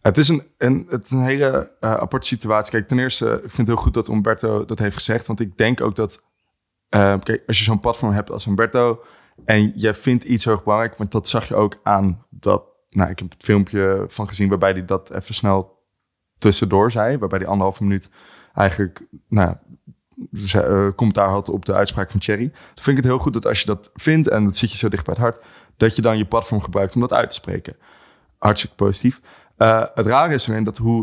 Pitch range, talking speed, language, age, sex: 95-115 Hz, 230 wpm, Dutch, 20-39, male